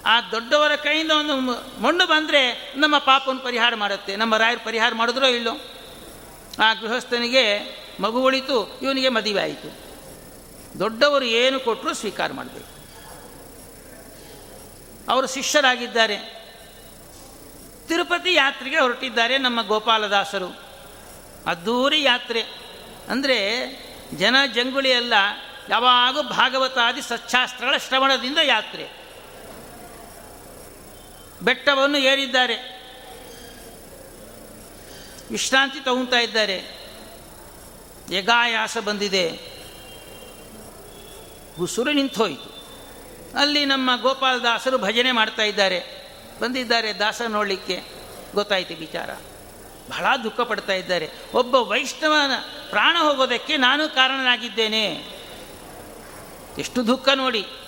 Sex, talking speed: male, 75 wpm